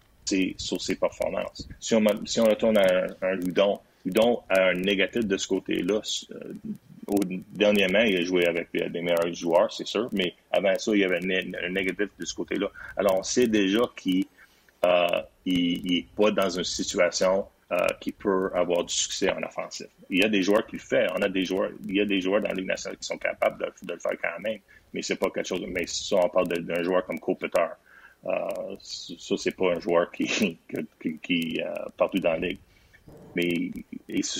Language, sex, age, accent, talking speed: French, male, 30-49, Canadian, 215 wpm